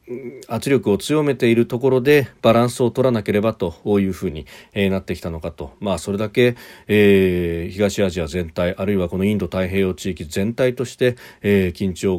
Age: 40-59